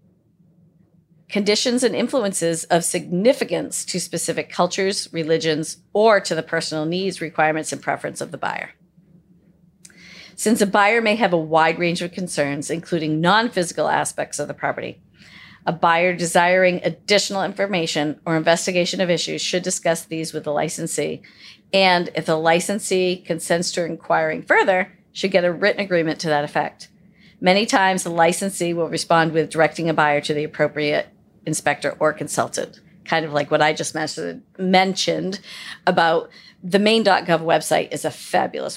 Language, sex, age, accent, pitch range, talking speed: English, female, 40-59, American, 160-185 Hz, 150 wpm